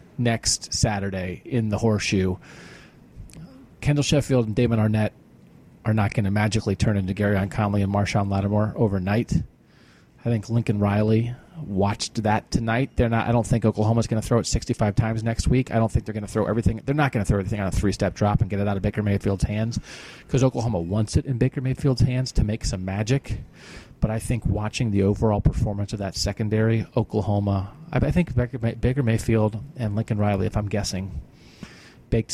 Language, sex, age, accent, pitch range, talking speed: English, male, 30-49, American, 105-120 Hz, 195 wpm